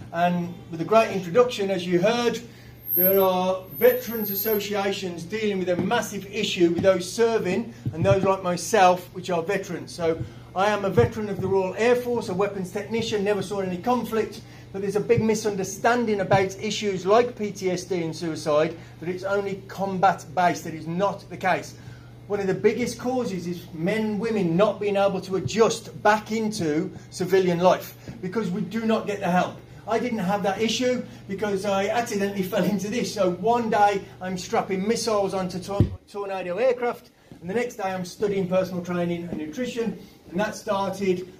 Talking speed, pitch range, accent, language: 175 wpm, 180-215 Hz, British, English